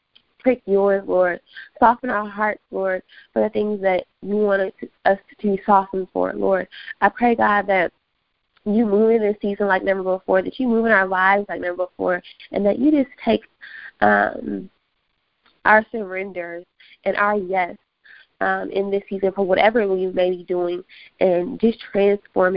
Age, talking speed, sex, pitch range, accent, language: 20-39, 165 wpm, female, 185-215 Hz, American, English